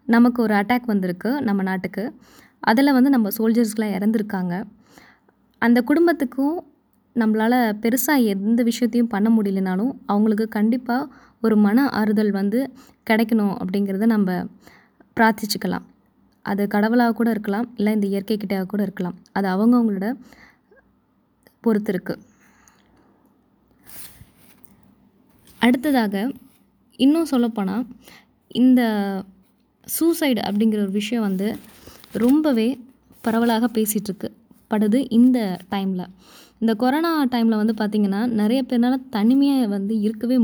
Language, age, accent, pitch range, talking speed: Tamil, 20-39, native, 205-245 Hz, 100 wpm